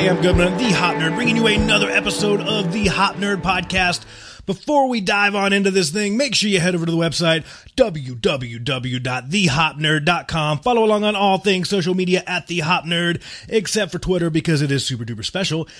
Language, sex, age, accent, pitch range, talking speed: English, male, 30-49, American, 135-180 Hz, 195 wpm